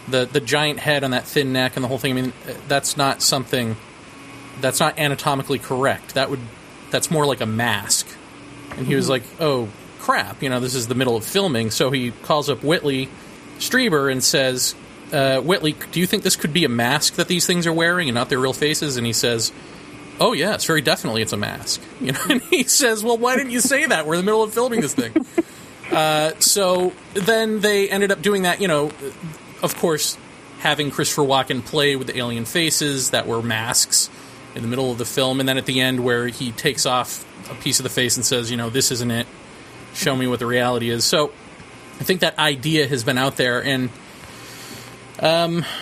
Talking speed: 220 wpm